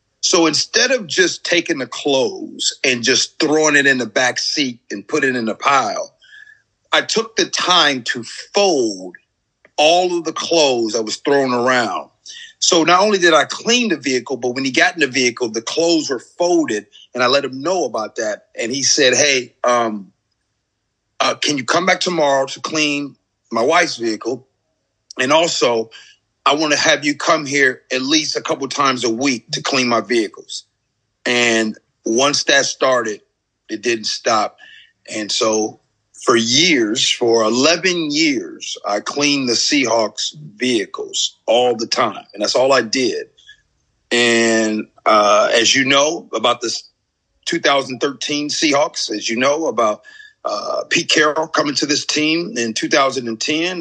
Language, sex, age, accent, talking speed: English, male, 40-59, American, 165 wpm